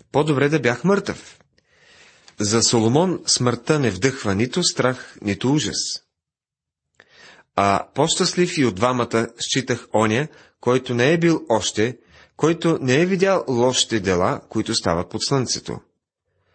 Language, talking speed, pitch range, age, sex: Bulgarian, 125 wpm, 110-150 Hz, 40-59, male